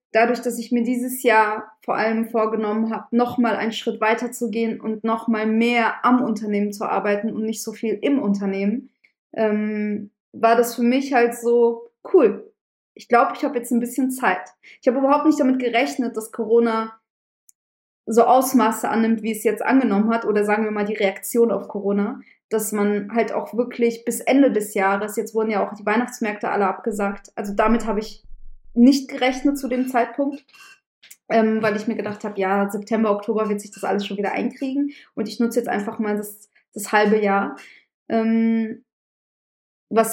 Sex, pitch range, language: female, 215-250 Hz, German